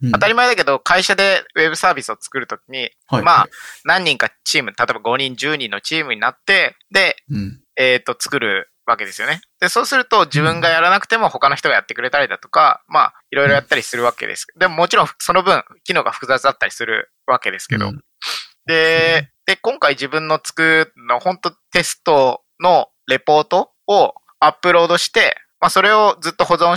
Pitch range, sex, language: 135-180 Hz, male, Japanese